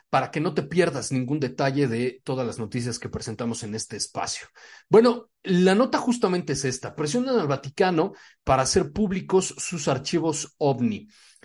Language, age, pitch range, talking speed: Spanish, 40-59, 140-195 Hz, 160 wpm